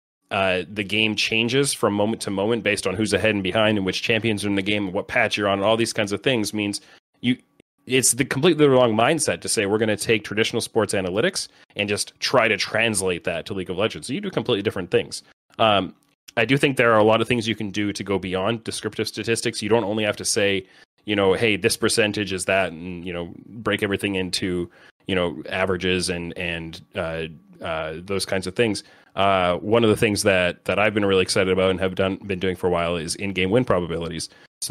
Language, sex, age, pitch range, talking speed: English, male, 30-49, 95-110 Hz, 235 wpm